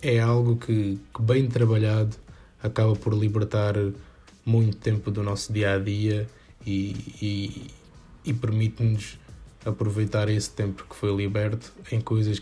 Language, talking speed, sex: Portuguese, 120 wpm, male